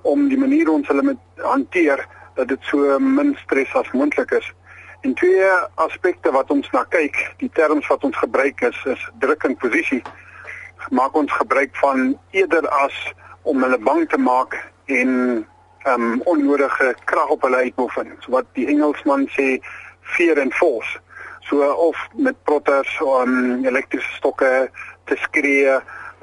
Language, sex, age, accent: English, male, 50-69, Dutch